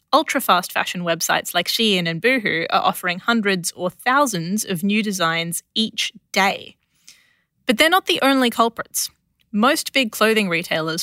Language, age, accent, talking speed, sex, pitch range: English, 20-39, Australian, 145 wpm, female, 185-255 Hz